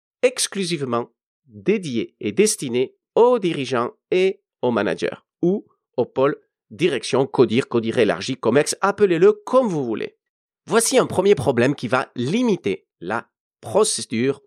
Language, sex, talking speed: French, male, 125 wpm